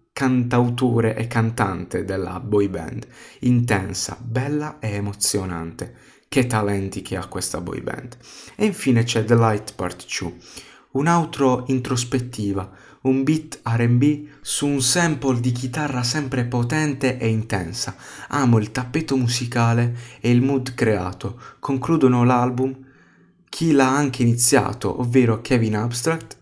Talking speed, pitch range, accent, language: 125 wpm, 110-135 Hz, native, Italian